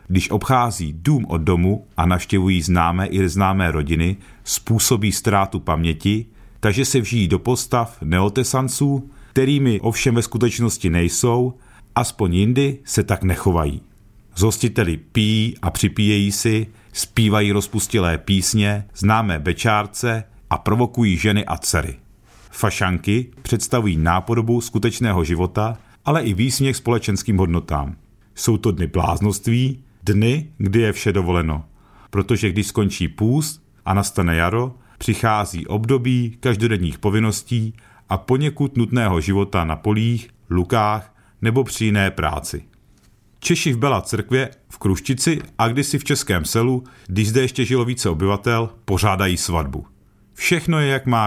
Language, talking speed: Czech, 130 wpm